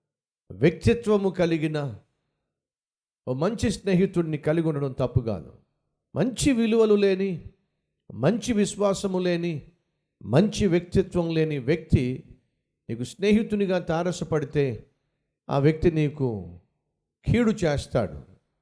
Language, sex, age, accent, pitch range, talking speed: Telugu, male, 50-69, native, 145-195 Hz, 85 wpm